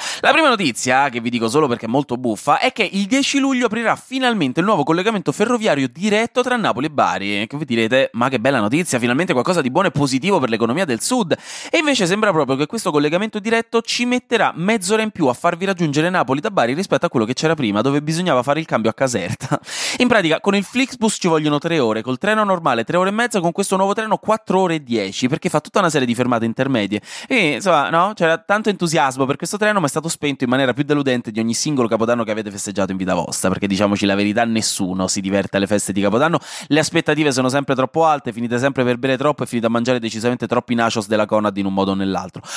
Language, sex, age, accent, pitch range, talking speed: Italian, male, 20-39, native, 115-180 Hz, 240 wpm